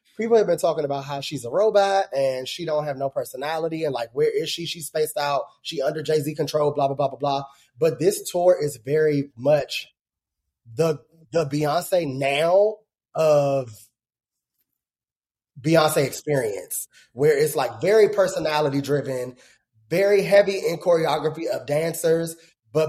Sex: male